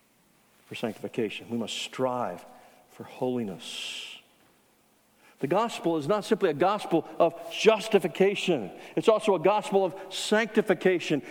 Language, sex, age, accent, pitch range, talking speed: English, male, 50-69, American, 140-190 Hz, 115 wpm